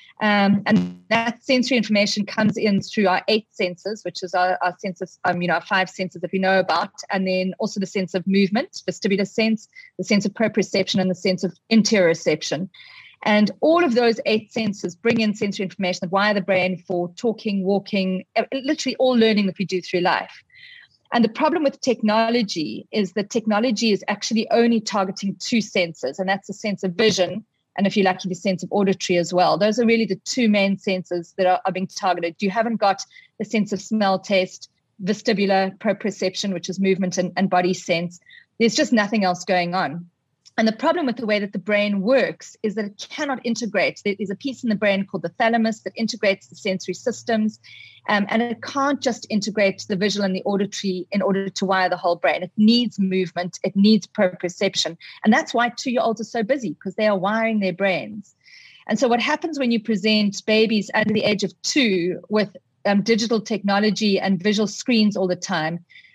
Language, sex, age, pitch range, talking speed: English, female, 30-49, 185-225 Hz, 200 wpm